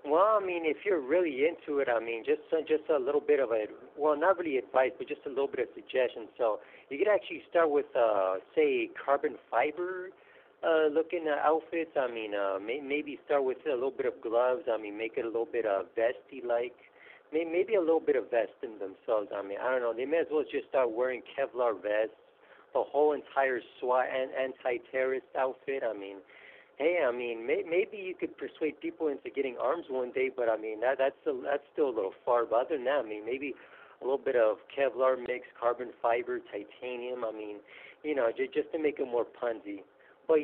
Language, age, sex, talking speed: English, 50-69, male, 210 wpm